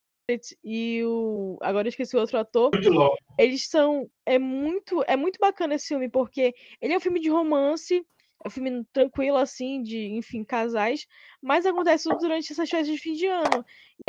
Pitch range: 235-300 Hz